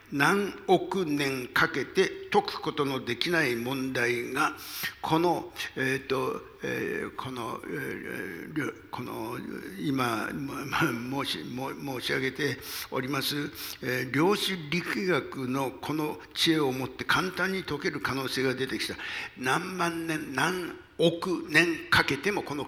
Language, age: Japanese, 60-79